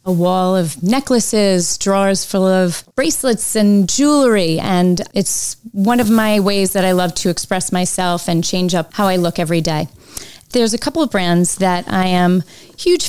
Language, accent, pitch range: English, American, 180-215 Hz